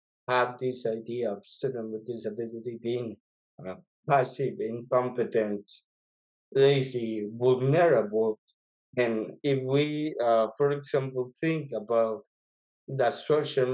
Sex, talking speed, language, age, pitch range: male, 100 wpm, English, 50-69, 115-135 Hz